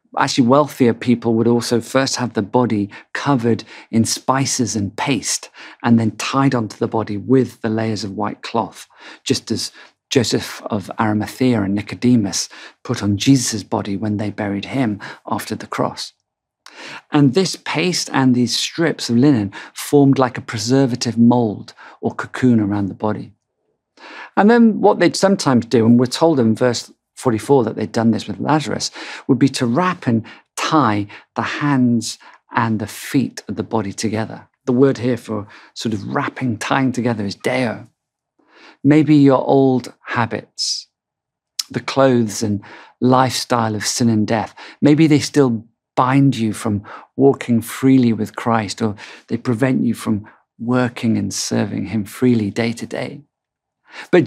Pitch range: 110-135 Hz